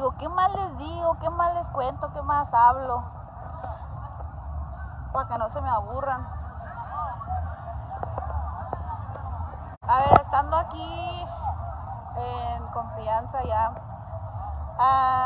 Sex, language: female, Spanish